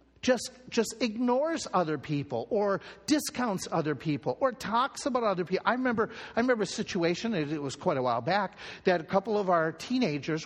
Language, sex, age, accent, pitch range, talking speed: English, male, 50-69, American, 150-210 Hz, 185 wpm